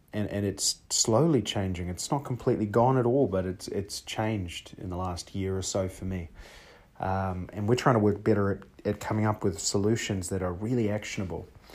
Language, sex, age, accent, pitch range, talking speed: English, male, 30-49, Australian, 95-115 Hz, 205 wpm